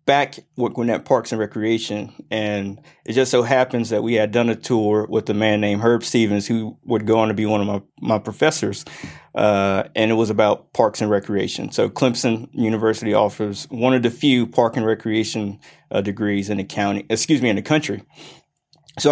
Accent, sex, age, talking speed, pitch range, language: American, male, 20-39, 200 wpm, 105-120 Hz, English